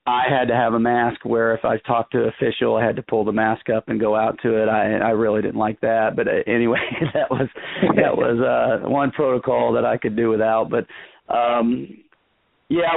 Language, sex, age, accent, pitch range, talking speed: English, male, 40-59, American, 110-125 Hz, 220 wpm